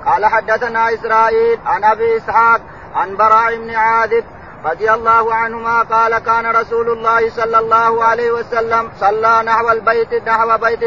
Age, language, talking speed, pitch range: 40-59, Arabic, 145 wpm, 225-230 Hz